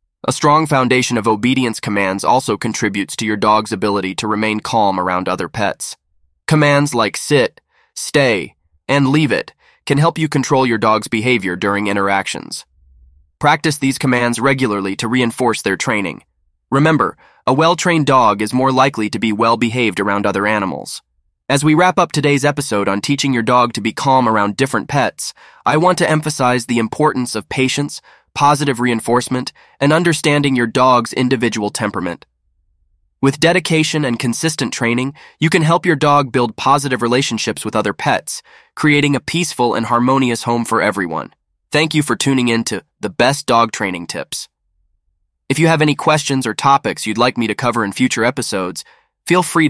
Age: 20-39